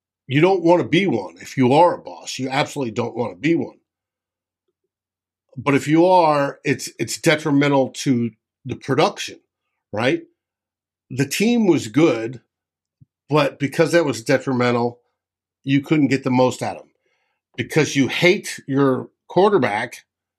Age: 50-69